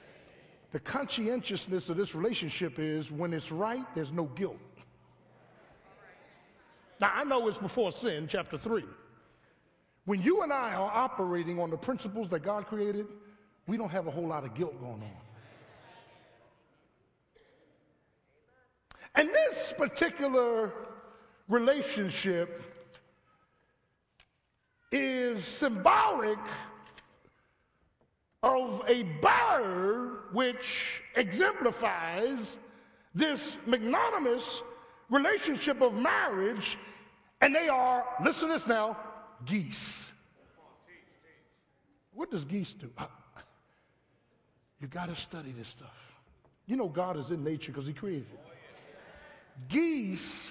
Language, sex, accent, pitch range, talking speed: English, male, American, 170-250 Hz, 105 wpm